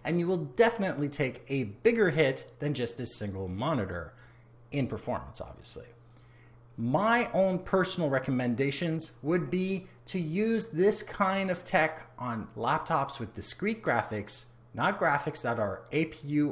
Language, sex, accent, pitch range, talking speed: English, male, American, 115-170 Hz, 140 wpm